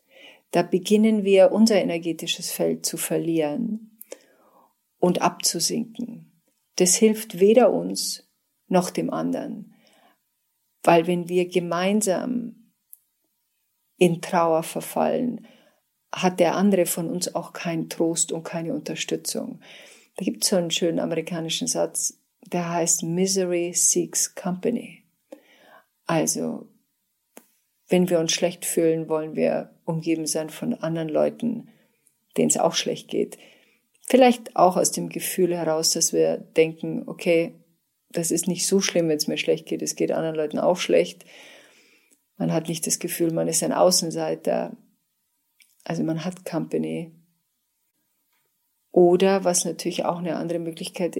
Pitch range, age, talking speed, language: 165-200 Hz, 50-69, 130 wpm, German